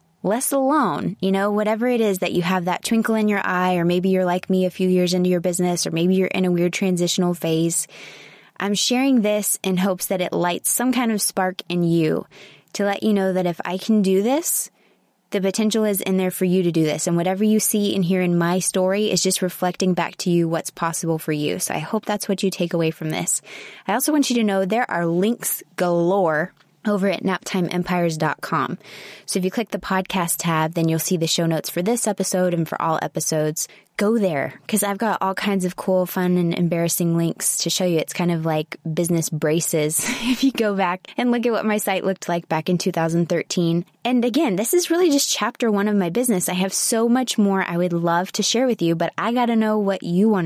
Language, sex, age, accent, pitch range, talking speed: English, female, 20-39, American, 170-210 Hz, 235 wpm